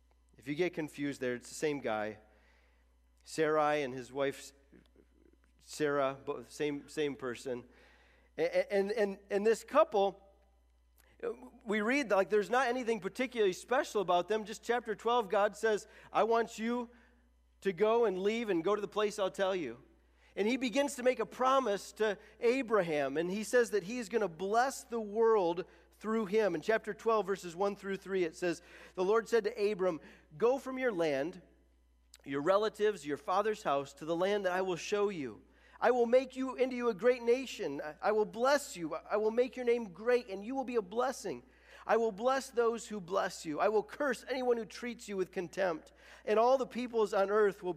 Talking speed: 190 wpm